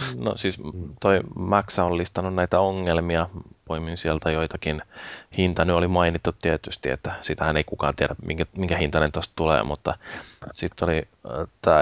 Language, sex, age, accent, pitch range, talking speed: Finnish, male, 20-39, native, 80-90 Hz, 150 wpm